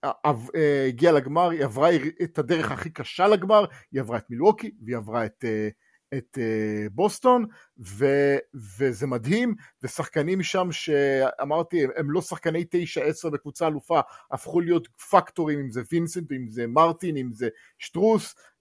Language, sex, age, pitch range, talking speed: English, male, 50-69, 135-180 Hz, 140 wpm